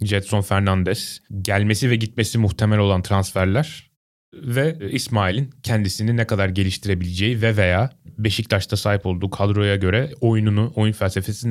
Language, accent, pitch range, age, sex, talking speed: Turkish, native, 100-120 Hz, 30-49, male, 125 wpm